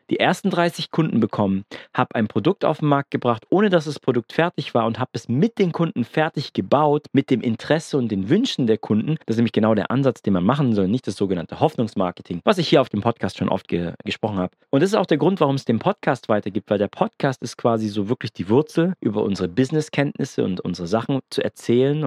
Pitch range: 105-140 Hz